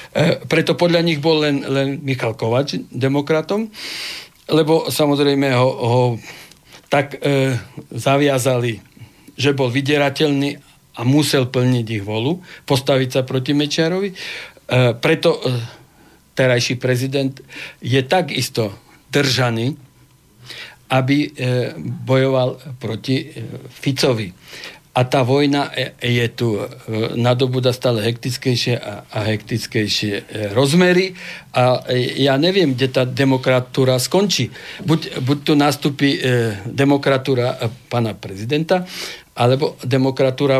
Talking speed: 105 wpm